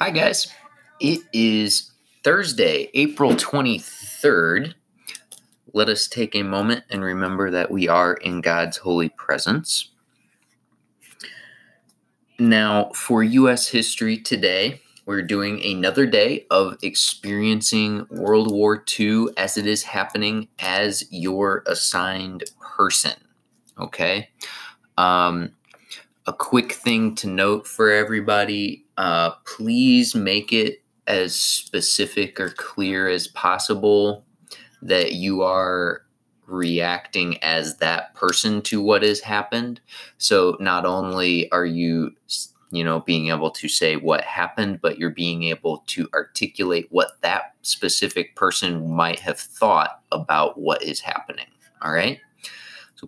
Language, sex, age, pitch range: English, male, 20-39, 90-110 Hz